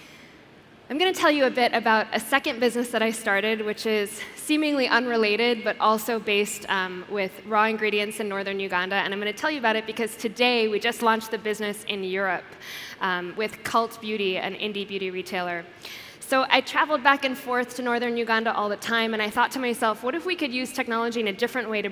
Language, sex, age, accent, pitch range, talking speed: English, female, 10-29, American, 205-240 Hz, 220 wpm